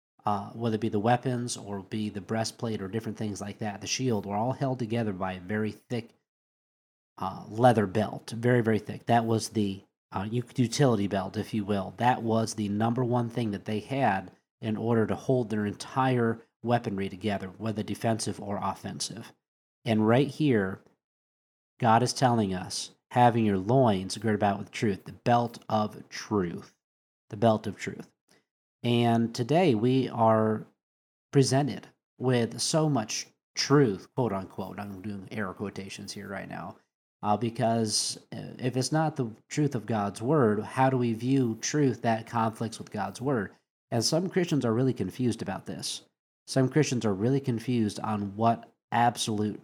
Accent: American